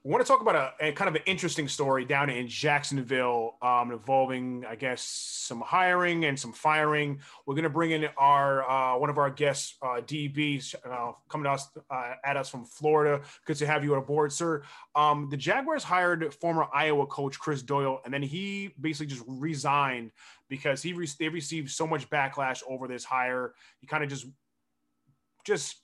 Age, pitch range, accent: 20-39, 135-160 Hz, American